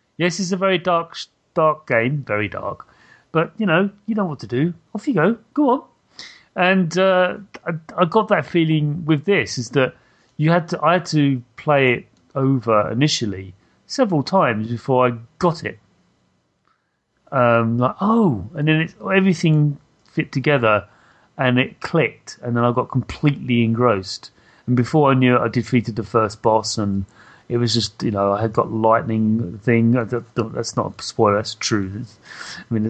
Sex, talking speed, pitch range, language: male, 175 wpm, 115-175 Hz, English